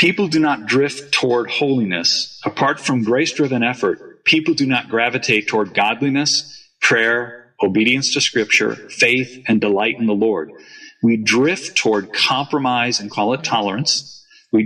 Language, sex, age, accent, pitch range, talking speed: English, male, 40-59, American, 115-150 Hz, 145 wpm